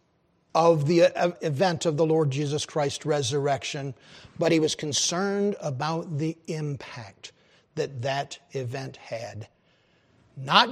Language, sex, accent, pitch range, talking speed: English, male, American, 160-215 Hz, 120 wpm